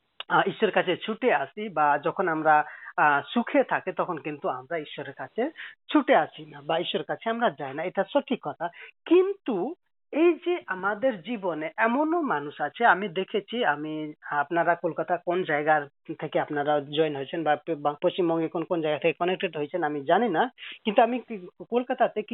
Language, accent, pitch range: Hindi, native, 150-235 Hz